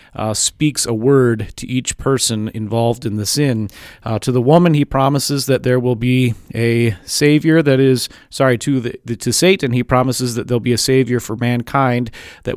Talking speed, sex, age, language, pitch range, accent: 190 wpm, male, 30-49, English, 115-135 Hz, American